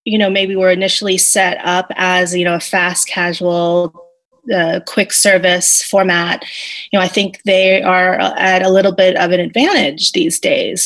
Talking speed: 175 wpm